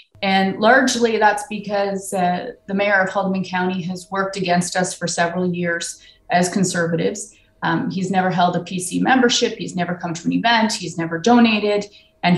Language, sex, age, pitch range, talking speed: English, female, 30-49, 185-225 Hz, 175 wpm